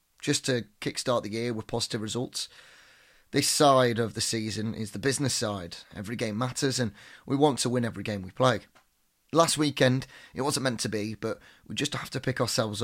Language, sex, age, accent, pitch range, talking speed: English, male, 30-49, British, 105-130 Hz, 200 wpm